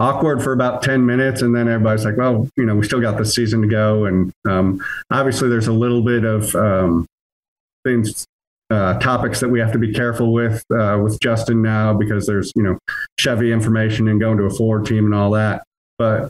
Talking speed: 215 wpm